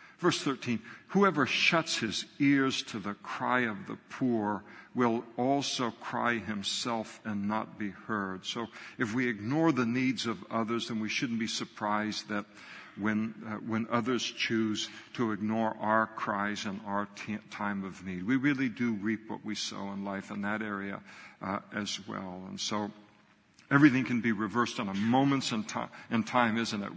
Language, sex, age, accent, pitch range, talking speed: English, male, 60-79, American, 105-120 Hz, 175 wpm